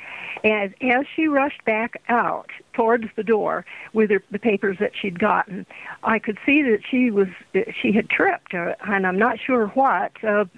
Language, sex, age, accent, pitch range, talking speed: English, female, 60-79, American, 200-235 Hz, 185 wpm